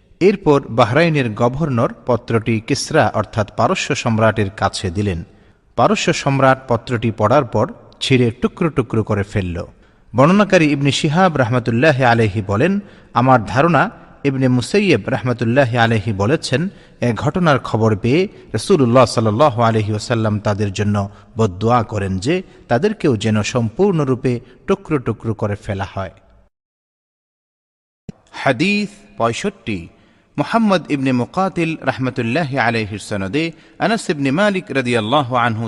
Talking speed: 105 wpm